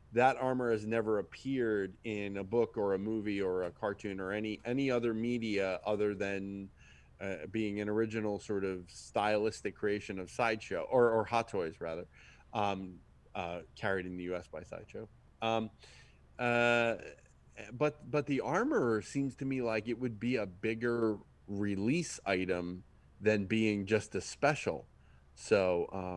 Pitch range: 100-130 Hz